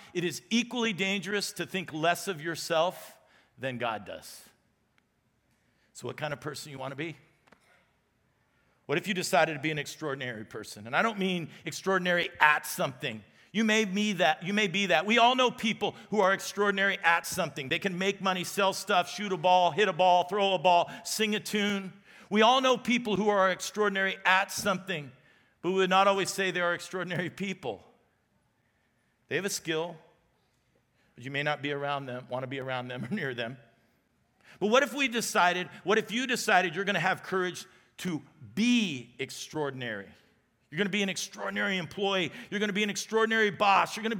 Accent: American